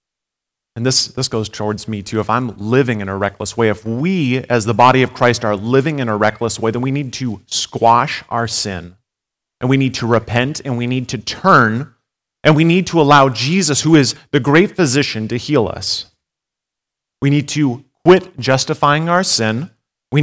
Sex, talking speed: male, 195 wpm